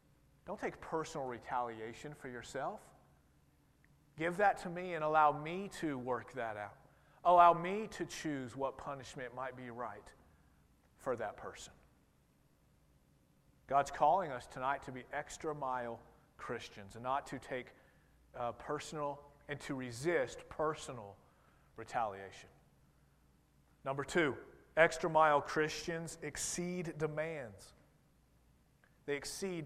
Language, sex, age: English, male, 40-59